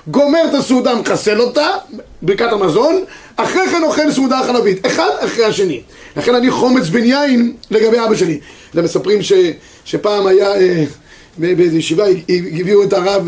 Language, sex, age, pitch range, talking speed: Hebrew, male, 30-49, 195-285 Hz, 160 wpm